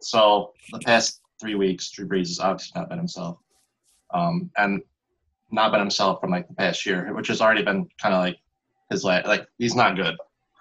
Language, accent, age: English, American, 20-39